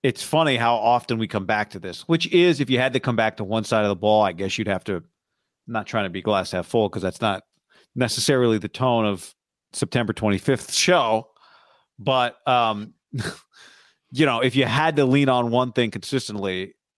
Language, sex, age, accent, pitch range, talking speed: English, male, 40-59, American, 110-140 Hz, 210 wpm